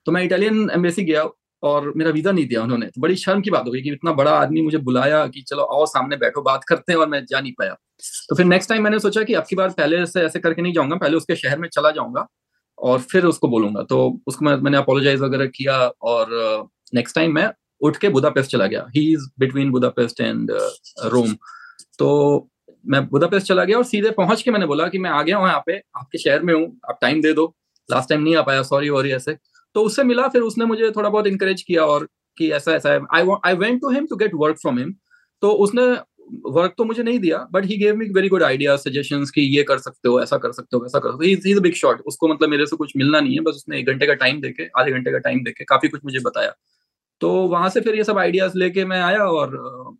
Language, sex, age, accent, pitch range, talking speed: Hindi, male, 30-49, native, 140-190 Hz, 245 wpm